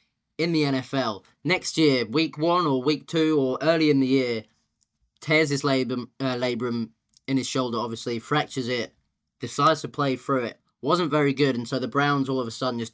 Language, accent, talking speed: English, British, 200 wpm